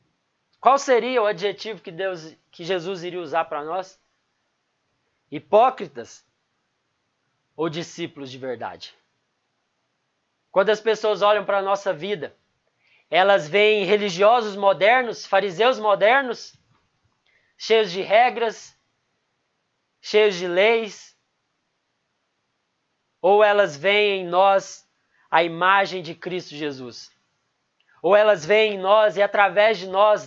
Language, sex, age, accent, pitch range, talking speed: Portuguese, male, 20-39, Brazilian, 185-225 Hz, 110 wpm